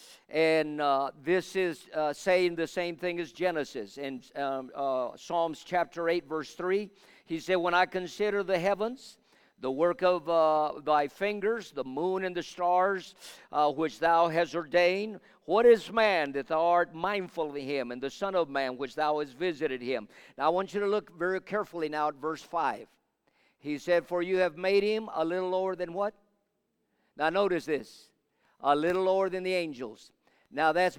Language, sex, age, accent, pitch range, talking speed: English, male, 50-69, American, 150-190 Hz, 185 wpm